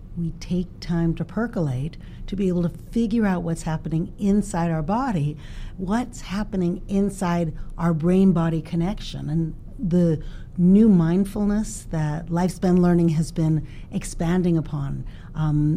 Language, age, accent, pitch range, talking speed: English, 50-69, American, 155-185 Hz, 130 wpm